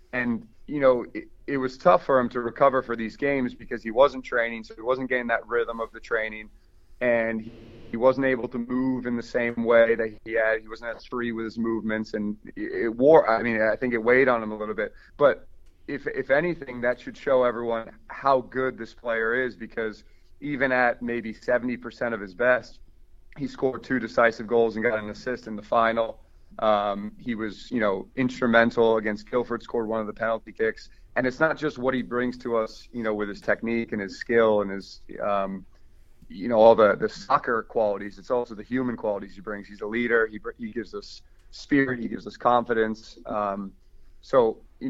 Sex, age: male, 30-49